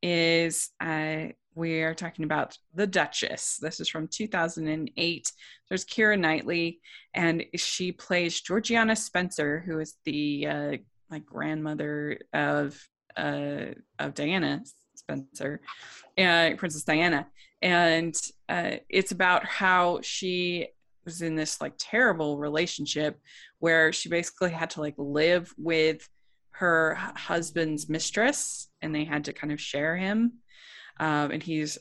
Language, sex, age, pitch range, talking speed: English, female, 20-39, 150-170 Hz, 130 wpm